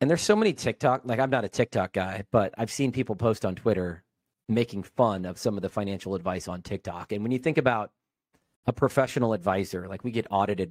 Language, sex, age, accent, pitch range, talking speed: English, male, 40-59, American, 100-130 Hz, 225 wpm